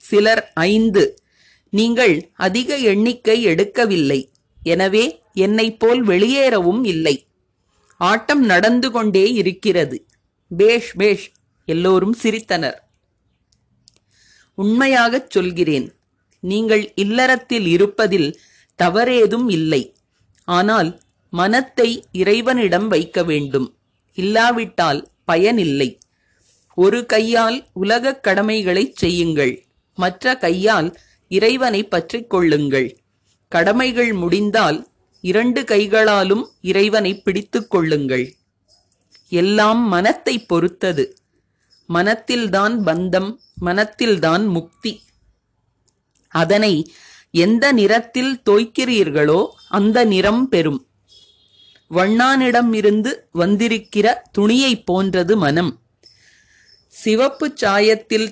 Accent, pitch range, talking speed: native, 170-225 Hz, 70 wpm